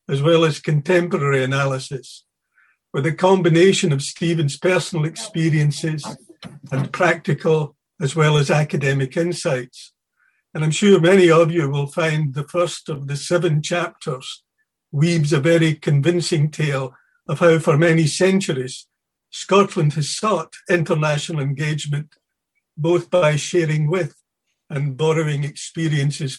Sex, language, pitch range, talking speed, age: male, English, 140-175 Hz, 125 wpm, 60-79